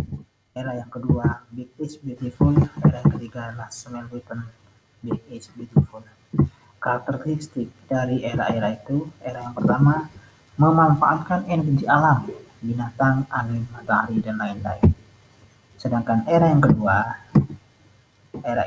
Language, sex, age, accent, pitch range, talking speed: English, male, 30-49, Indonesian, 110-135 Hz, 110 wpm